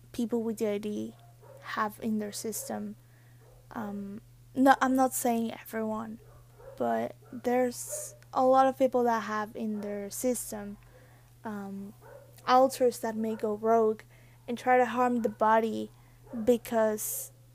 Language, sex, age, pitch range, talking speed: English, female, 20-39, 200-245 Hz, 130 wpm